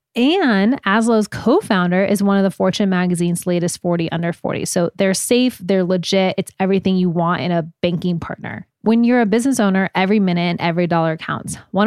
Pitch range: 175-215 Hz